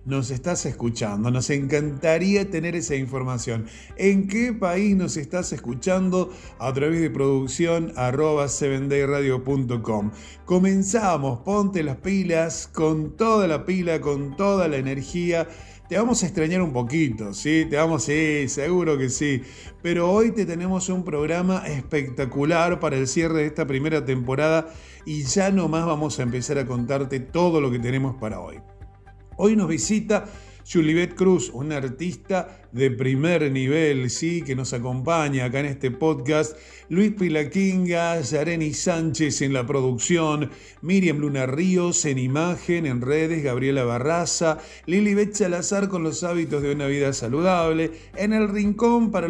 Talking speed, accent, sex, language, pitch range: 145 wpm, Argentinian, male, Spanish, 135-175 Hz